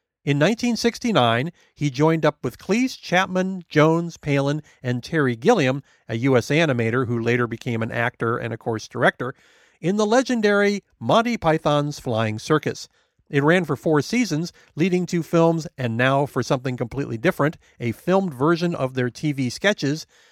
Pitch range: 130-185 Hz